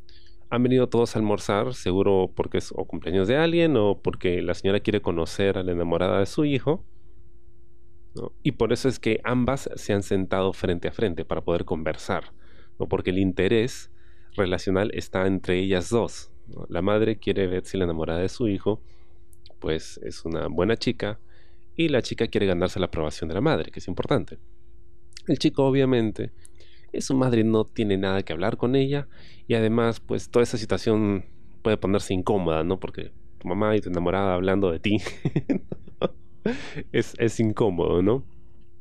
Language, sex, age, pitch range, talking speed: Spanish, male, 30-49, 85-115 Hz, 175 wpm